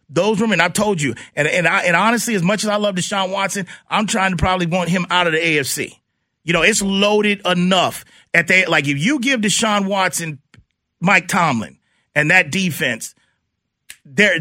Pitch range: 170-215 Hz